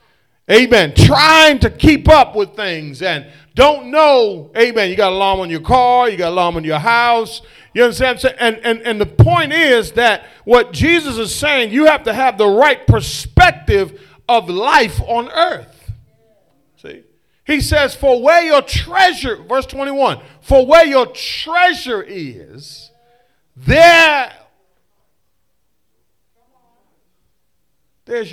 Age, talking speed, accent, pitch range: 40-59, 130 wpm, American, 185-275 Hz